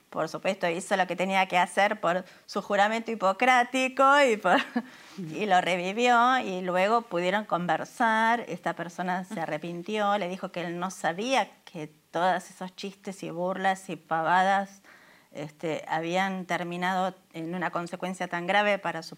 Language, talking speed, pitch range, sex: Spanish, 145 wpm, 170-205 Hz, female